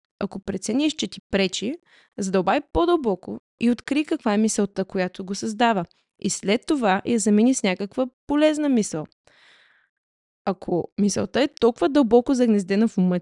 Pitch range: 195-265 Hz